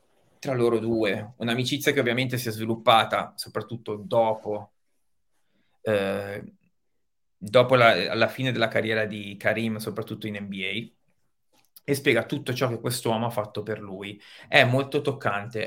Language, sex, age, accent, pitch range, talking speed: Italian, male, 30-49, native, 110-125 Hz, 140 wpm